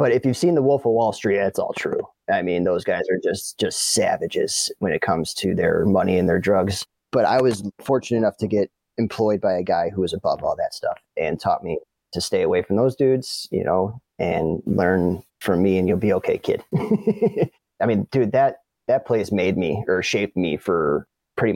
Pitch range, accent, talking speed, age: 95-130 Hz, American, 220 wpm, 30-49